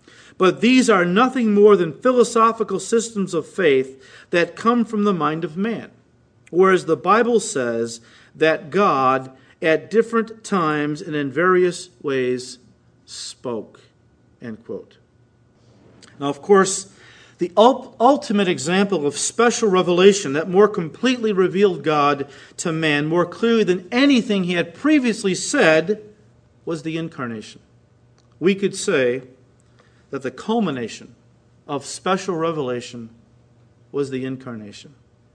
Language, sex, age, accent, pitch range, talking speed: English, male, 50-69, American, 125-190 Hz, 120 wpm